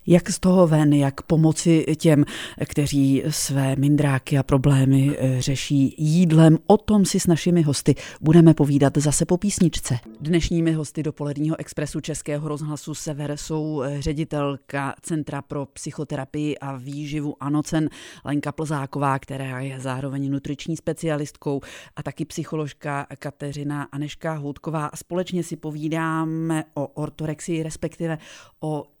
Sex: female